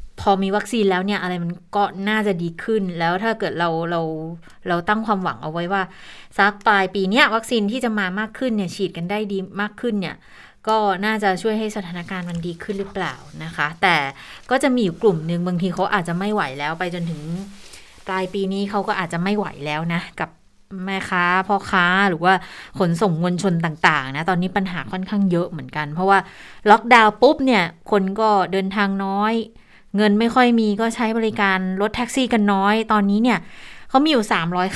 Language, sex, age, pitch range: Thai, female, 20-39, 175-215 Hz